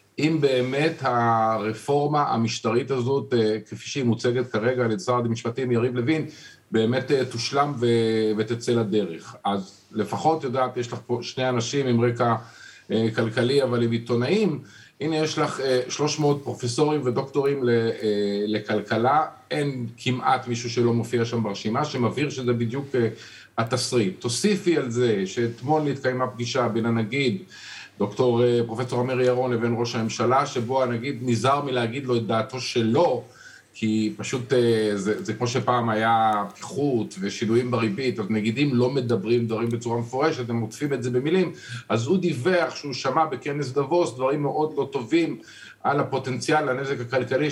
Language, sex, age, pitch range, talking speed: Hebrew, male, 50-69, 115-135 Hz, 140 wpm